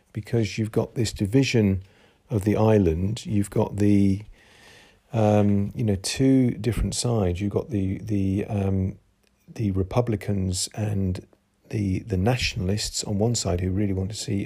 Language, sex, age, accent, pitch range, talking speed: English, male, 40-59, British, 100-115 Hz, 150 wpm